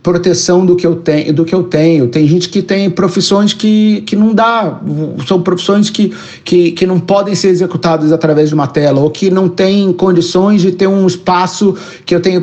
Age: 50-69